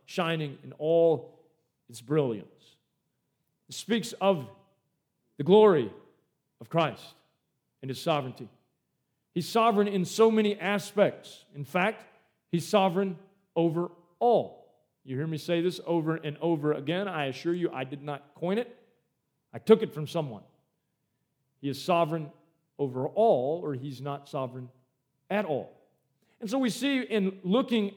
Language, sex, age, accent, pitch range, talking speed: English, male, 40-59, American, 140-190 Hz, 140 wpm